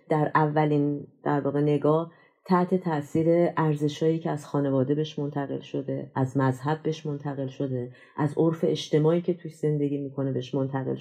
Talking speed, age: 140 wpm, 30-49